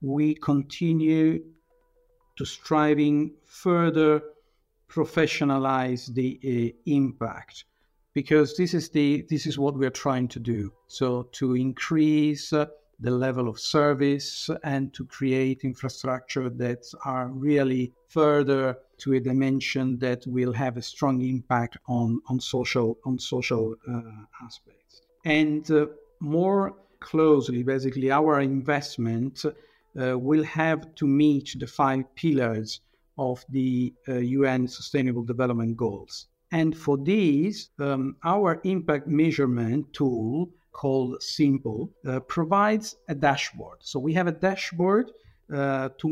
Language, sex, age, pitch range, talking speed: Italian, male, 50-69, 130-160 Hz, 125 wpm